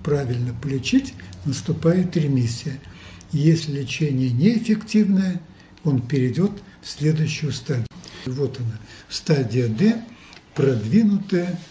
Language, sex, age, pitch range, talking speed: Russian, male, 60-79, 140-175 Hz, 90 wpm